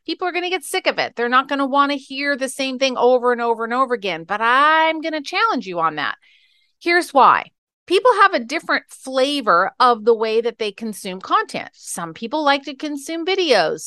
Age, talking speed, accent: 40-59, 225 wpm, American